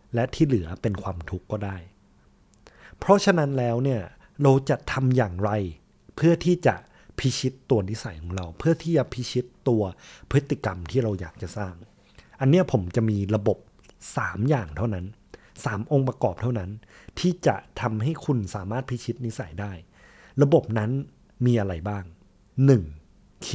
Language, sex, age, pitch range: Thai, male, 20-39, 100-140 Hz